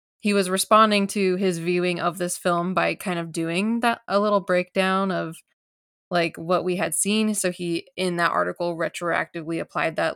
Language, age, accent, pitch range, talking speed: English, 20-39, American, 175-200 Hz, 185 wpm